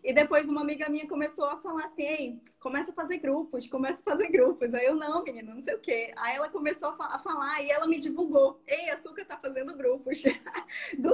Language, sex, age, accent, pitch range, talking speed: Portuguese, female, 20-39, Brazilian, 245-310 Hz, 220 wpm